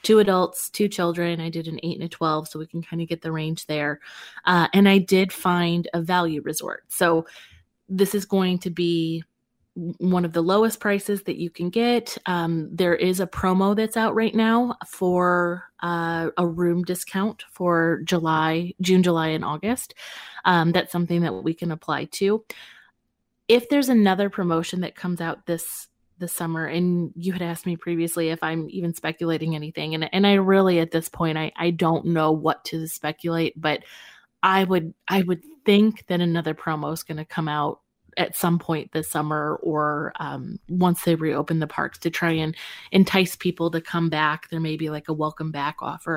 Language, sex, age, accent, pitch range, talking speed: English, female, 20-39, American, 160-185 Hz, 190 wpm